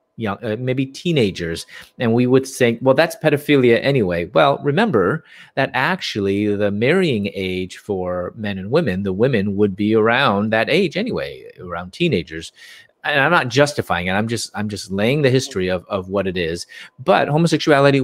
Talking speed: 175 wpm